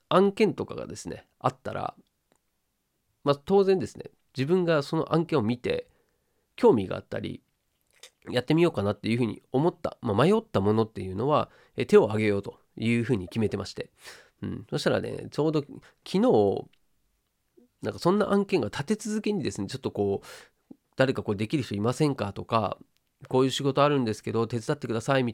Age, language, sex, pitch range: 40-59, Japanese, male, 105-165 Hz